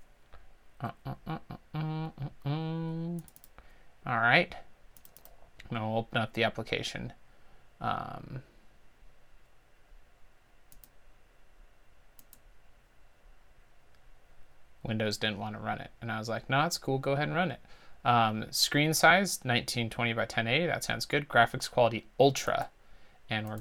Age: 30-49